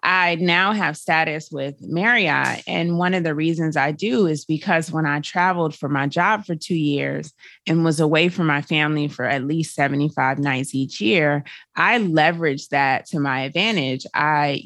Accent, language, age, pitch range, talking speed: American, English, 30-49, 145-175 Hz, 180 wpm